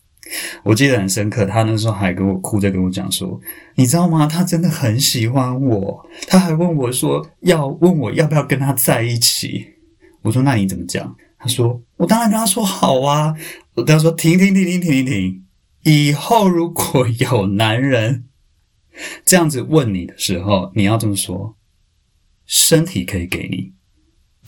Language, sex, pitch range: Chinese, male, 95-145 Hz